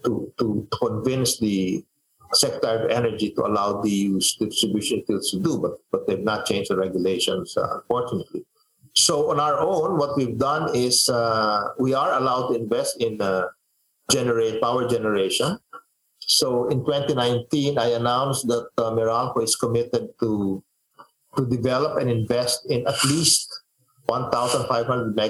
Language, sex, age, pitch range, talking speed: English, male, 50-69, 110-145 Hz, 145 wpm